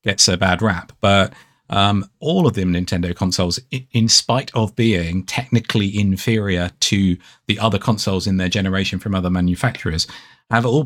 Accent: British